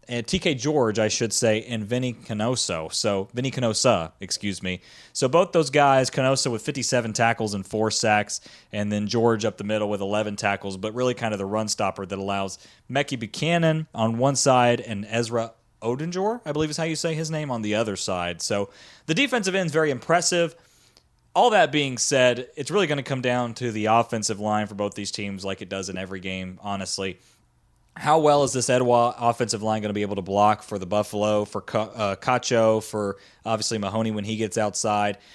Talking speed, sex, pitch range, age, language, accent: 205 wpm, male, 105-135 Hz, 30-49, English, American